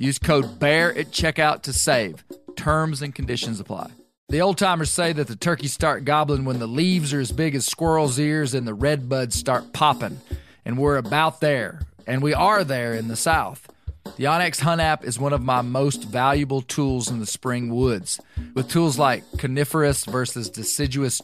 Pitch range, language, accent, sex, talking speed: 125-150 Hz, English, American, male, 185 wpm